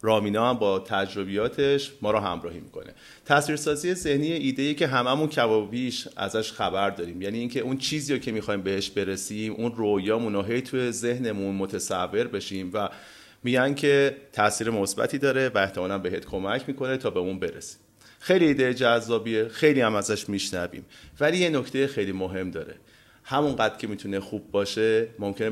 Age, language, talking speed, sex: 30-49, Persian, 155 wpm, male